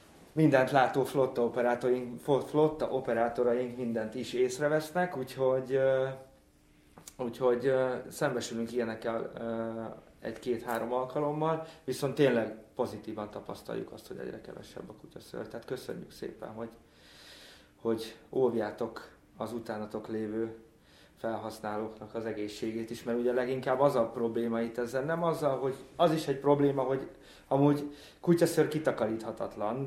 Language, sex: English, male